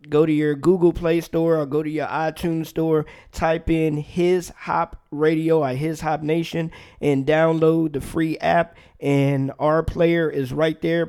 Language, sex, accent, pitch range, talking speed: English, male, American, 140-165 Hz, 175 wpm